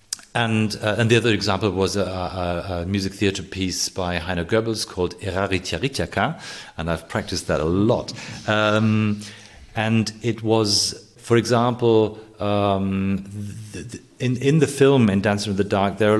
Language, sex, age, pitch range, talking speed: English, male, 40-59, 90-110 Hz, 165 wpm